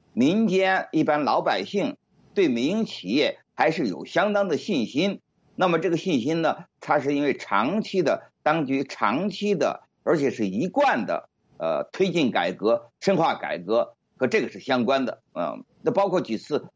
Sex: male